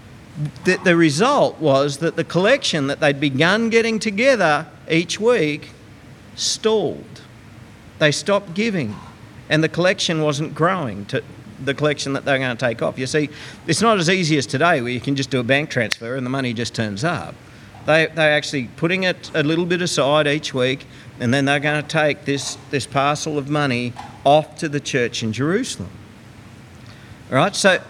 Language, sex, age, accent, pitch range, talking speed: English, male, 50-69, Australian, 120-170 Hz, 180 wpm